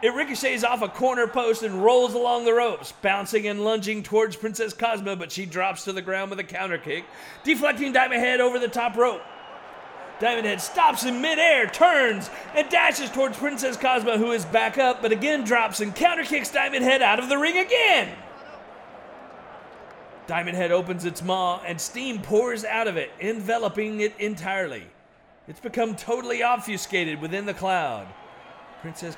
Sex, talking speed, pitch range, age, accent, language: male, 175 wpm, 205-295 Hz, 40-59, American, English